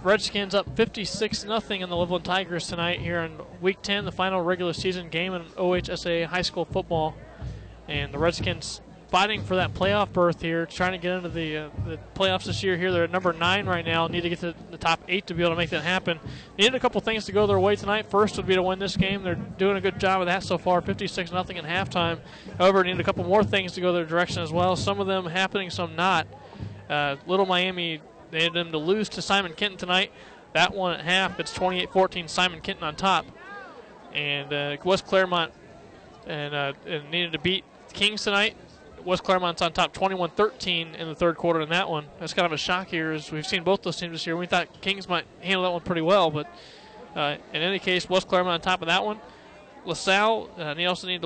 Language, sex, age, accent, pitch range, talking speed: English, male, 20-39, American, 165-190 Hz, 230 wpm